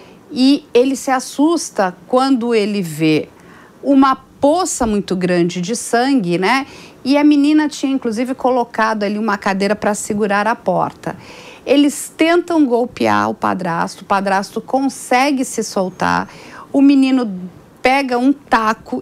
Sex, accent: female, Brazilian